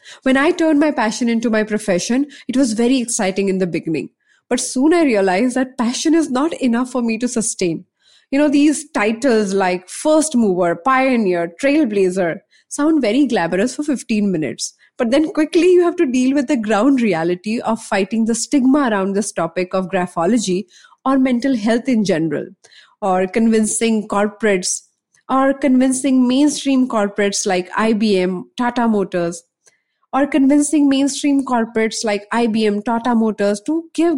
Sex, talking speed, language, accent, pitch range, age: female, 155 wpm, English, Indian, 205-275 Hz, 20-39